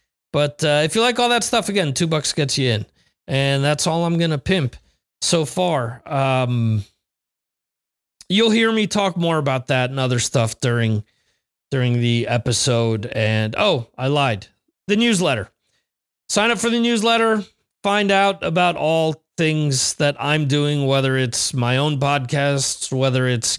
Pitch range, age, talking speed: 130-175 Hz, 30-49, 165 wpm